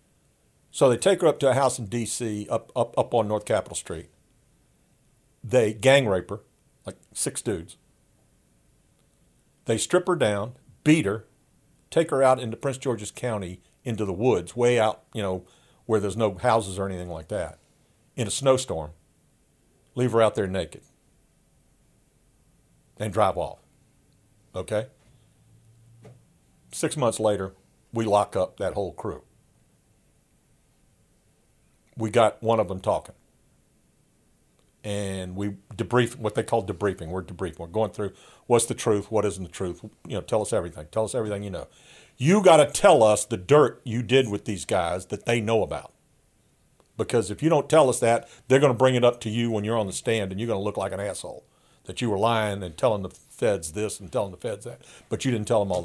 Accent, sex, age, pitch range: American, male, 50-69, 100-125 Hz